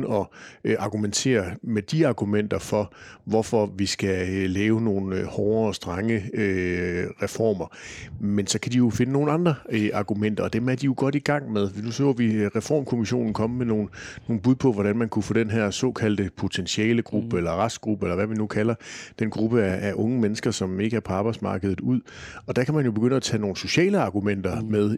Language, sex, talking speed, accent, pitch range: Danish, male, 195 wpm, native, 100-120 Hz